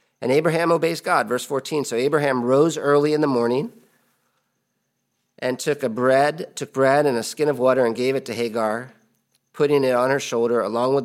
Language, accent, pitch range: English, American, 115-135 Hz